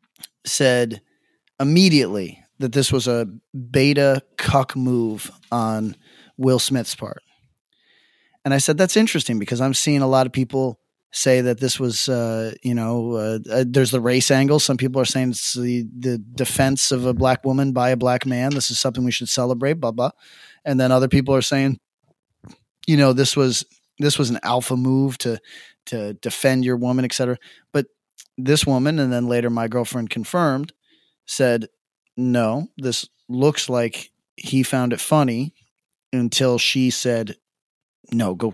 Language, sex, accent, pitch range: English, male, American, 120-135 Hz